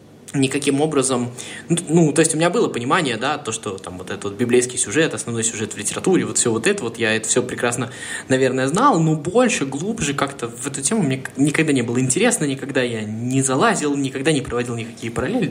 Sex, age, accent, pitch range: male, 20-39, native, 120-150 Hz